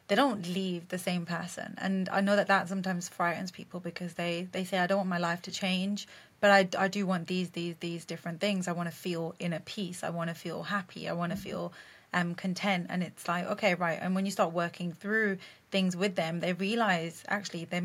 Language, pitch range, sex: English, 180-205 Hz, female